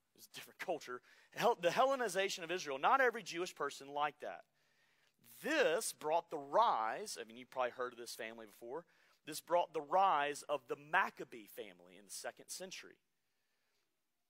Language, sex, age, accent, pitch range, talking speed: English, male, 30-49, American, 145-215 Hz, 165 wpm